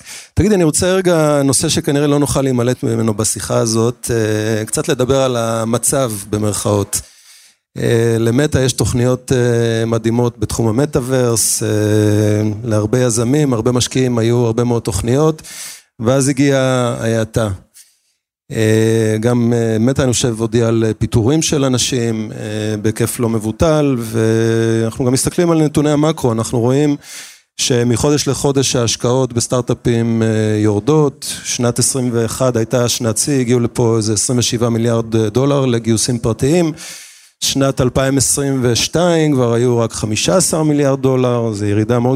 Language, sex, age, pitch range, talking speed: Hebrew, male, 30-49, 115-135 Hz, 115 wpm